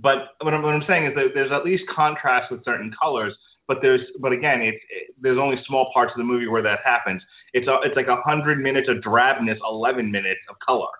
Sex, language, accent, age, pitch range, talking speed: male, English, American, 30-49, 115-150 Hz, 235 wpm